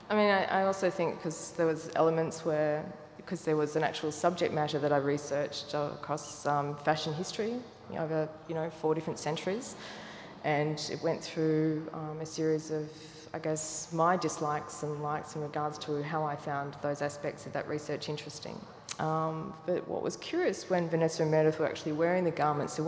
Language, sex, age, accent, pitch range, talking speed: English, female, 20-39, Australian, 145-155 Hz, 190 wpm